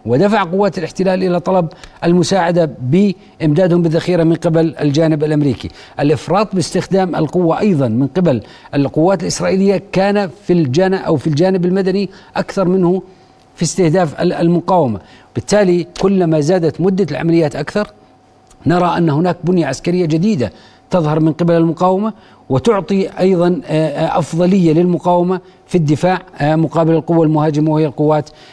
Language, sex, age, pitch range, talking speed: Arabic, male, 50-69, 155-185 Hz, 125 wpm